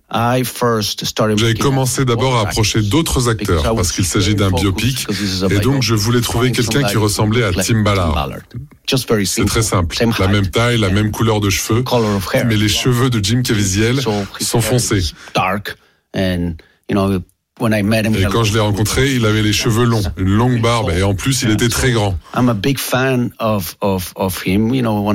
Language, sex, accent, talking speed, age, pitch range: French, male, French, 150 wpm, 40-59, 95-120 Hz